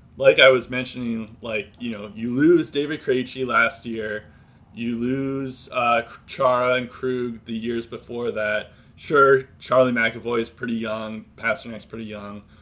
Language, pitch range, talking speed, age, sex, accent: English, 105-130 Hz, 150 wpm, 20-39, male, American